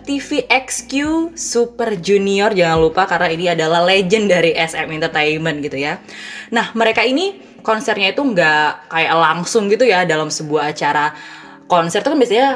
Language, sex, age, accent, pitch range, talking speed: Indonesian, female, 20-39, native, 165-235 Hz, 150 wpm